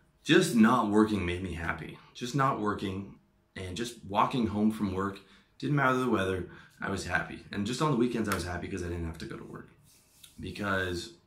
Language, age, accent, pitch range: English, 30-49, American, 90-110 Hz